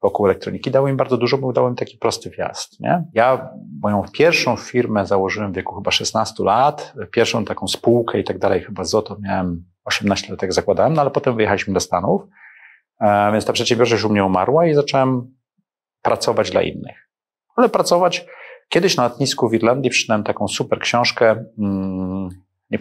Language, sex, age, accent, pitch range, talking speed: Polish, male, 40-59, native, 95-125 Hz, 175 wpm